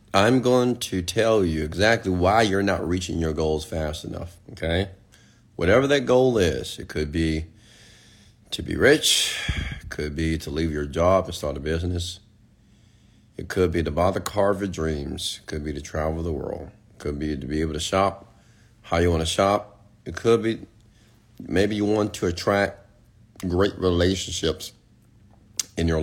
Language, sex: English, male